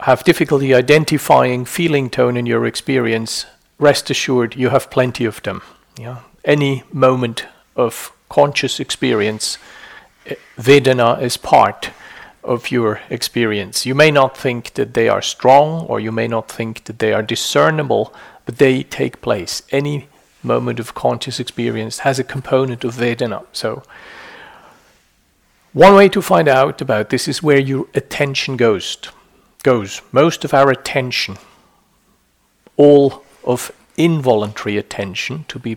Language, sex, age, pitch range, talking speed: English, male, 50-69, 115-140 Hz, 135 wpm